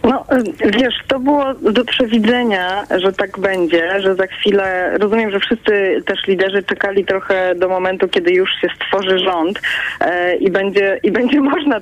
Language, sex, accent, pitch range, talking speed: Polish, female, native, 185-220 Hz, 155 wpm